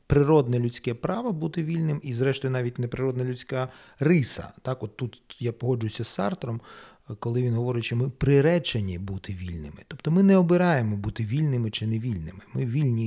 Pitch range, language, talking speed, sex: 115-150 Hz, Ukrainian, 165 wpm, male